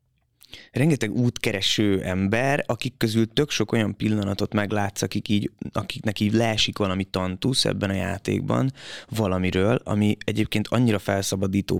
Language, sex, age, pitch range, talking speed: Hungarian, male, 20-39, 100-120 Hz, 130 wpm